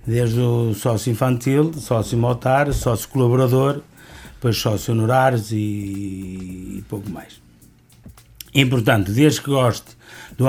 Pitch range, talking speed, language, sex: 115-135 Hz, 120 wpm, Portuguese, male